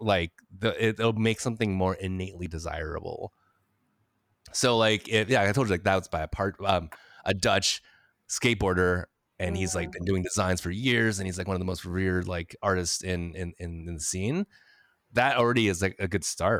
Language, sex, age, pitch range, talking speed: English, male, 20-39, 90-110 Hz, 205 wpm